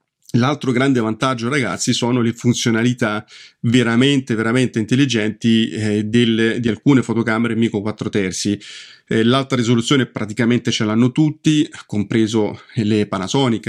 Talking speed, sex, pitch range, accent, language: 125 wpm, male, 105-125 Hz, native, Italian